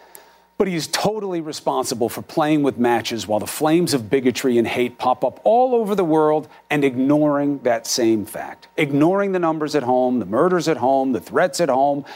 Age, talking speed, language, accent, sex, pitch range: 50-69, 195 wpm, English, American, male, 130-185 Hz